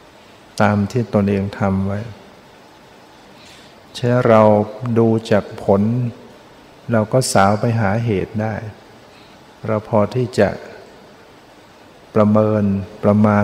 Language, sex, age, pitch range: Thai, male, 60-79, 100-115 Hz